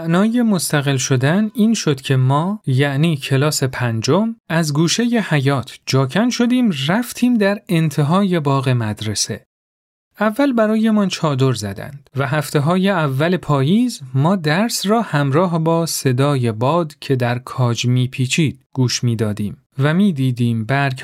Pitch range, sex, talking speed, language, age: 130-180 Hz, male, 135 wpm, Persian, 40-59